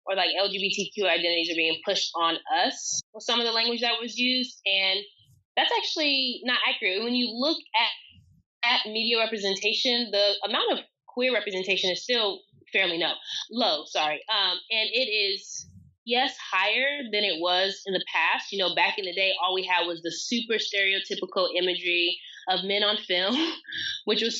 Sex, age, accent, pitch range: female, 20-39, American, 180-240 Hz